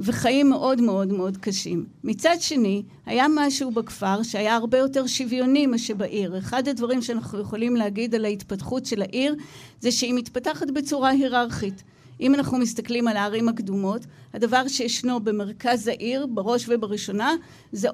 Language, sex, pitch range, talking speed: Hebrew, female, 215-255 Hz, 145 wpm